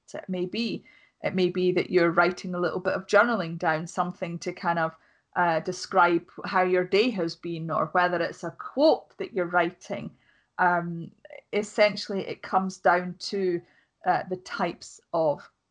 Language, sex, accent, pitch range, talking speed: English, female, British, 175-205 Hz, 170 wpm